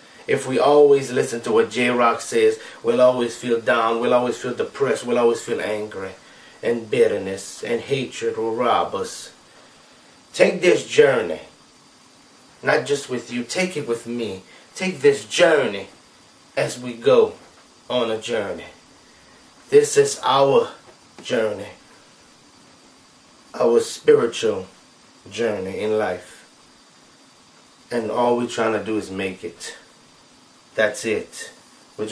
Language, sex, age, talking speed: English, male, 30-49, 125 wpm